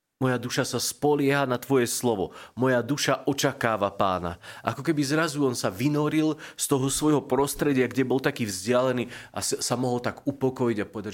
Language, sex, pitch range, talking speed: Slovak, male, 115-140 Hz, 170 wpm